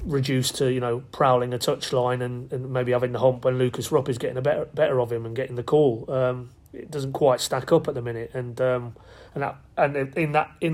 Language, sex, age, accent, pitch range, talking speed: English, male, 30-49, British, 120-135 Hz, 250 wpm